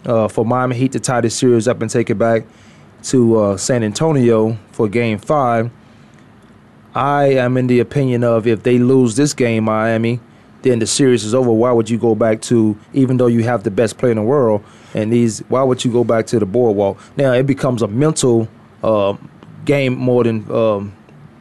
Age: 20-39